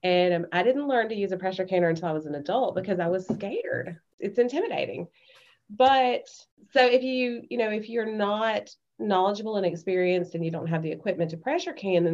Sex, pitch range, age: female, 165-205 Hz, 30-49